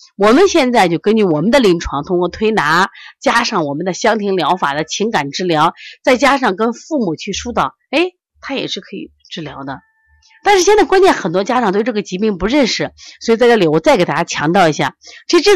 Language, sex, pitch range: Chinese, female, 195-325 Hz